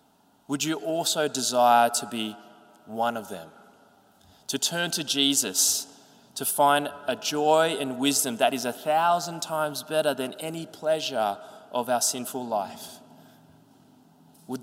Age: 20-39